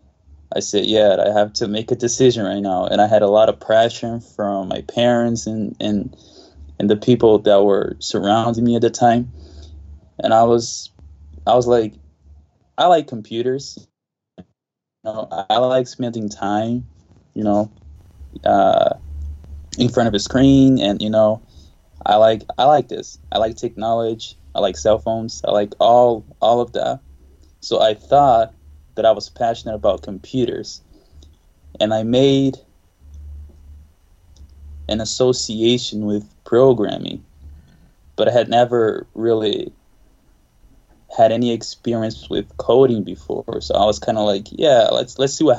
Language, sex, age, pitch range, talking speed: English, male, 10-29, 75-115 Hz, 150 wpm